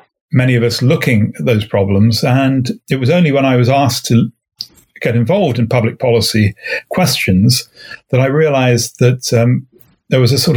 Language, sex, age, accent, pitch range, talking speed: English, male, 40-59, British, 115-135 Hz, 175 wpm